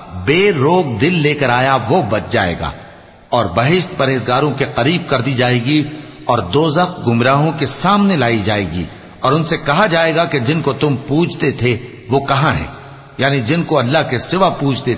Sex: male